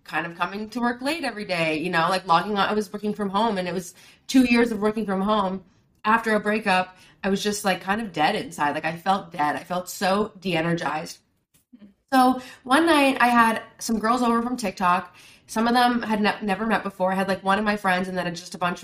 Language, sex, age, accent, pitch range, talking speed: English, female, 20-39, American, 185-230 Hz, 240 wpm